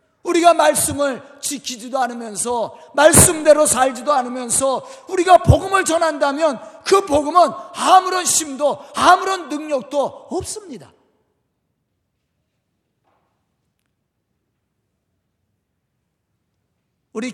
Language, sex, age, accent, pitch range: Korean, male, 40-59, native, 175-270 Hz